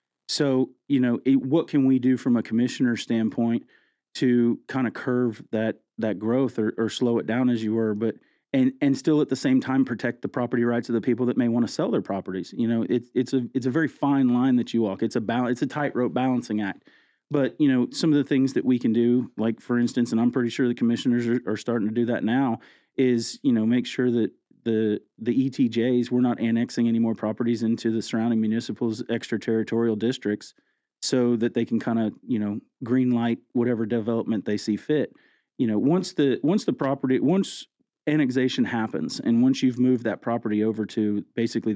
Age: 40-59